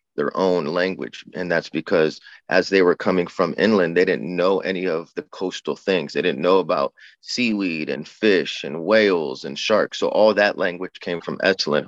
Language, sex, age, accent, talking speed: English, male, 30-49, American, 190 wpm